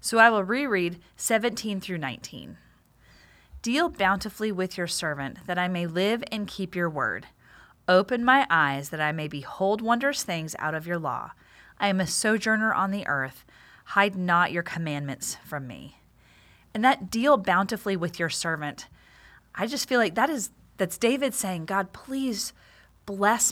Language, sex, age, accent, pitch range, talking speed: English, female, 30-49, American, 165-215 Hz, 165 wpm